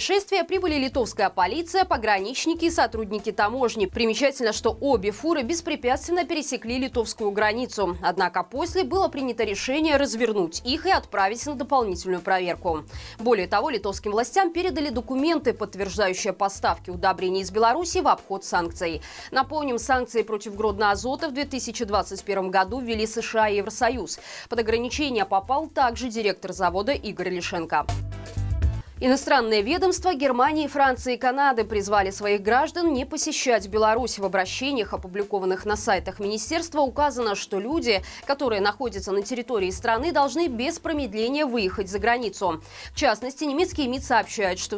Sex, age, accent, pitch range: female, 20-39, native, 200-285 Hz